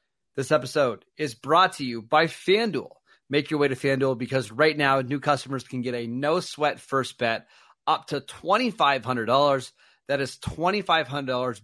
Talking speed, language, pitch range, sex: 155 wpm, English, 120-145 Hz, male